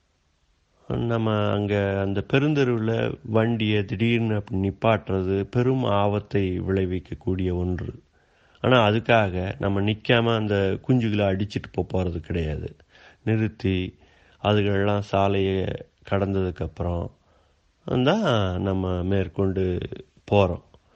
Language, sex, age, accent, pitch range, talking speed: Tamil, male, 30-49, native, 95-110 Hz, 85 wpm